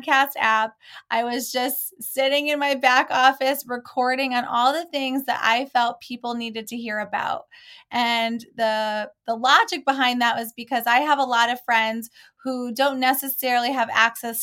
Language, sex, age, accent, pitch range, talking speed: English, female, 20-39, American, 225-265 Hz, 175 wpm